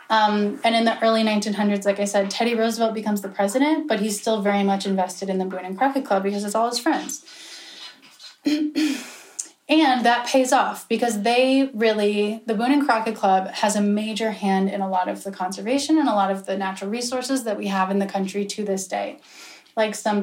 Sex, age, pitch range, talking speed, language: female, 10-29, 200-240 Hz, 210 wpm, English